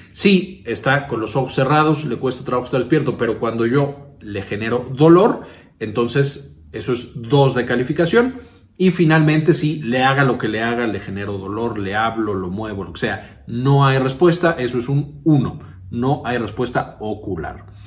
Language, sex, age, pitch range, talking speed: Spanish, male, 40-59, 110-150 Hz, 180 wpm